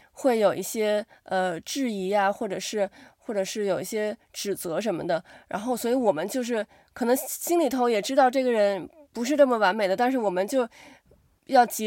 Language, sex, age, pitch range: Chinese, female, 20-39, 200-270 Hz